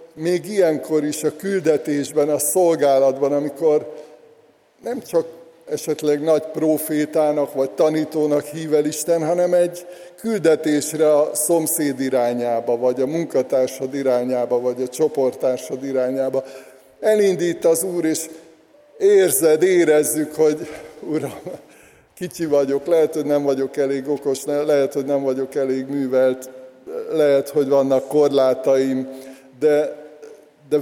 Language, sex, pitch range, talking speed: Hungarian, male, 135-165 Hz, 115 wpm